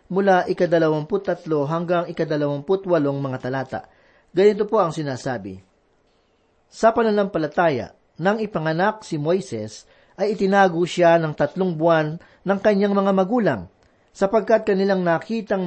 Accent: native